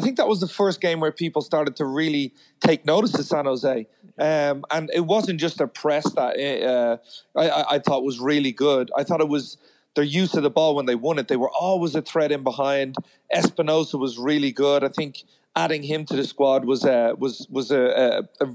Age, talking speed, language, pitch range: 30-49, 225 wpm, English, 140-170 Hz